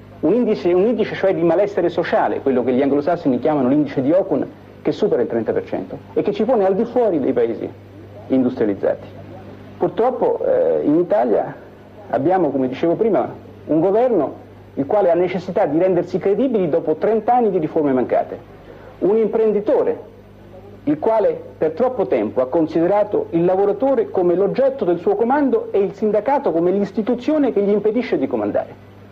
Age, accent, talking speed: 50-69, native, 165 wpm